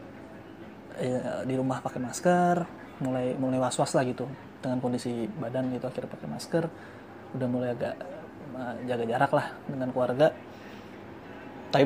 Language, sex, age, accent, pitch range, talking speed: Indonesian, male, 20-39, native, 125-140 Hz, 130 wpm